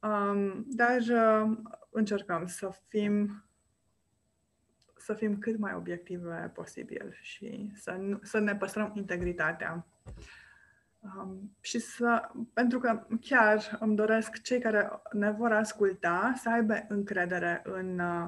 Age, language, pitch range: 20-39, Romanian, 190-220 Hz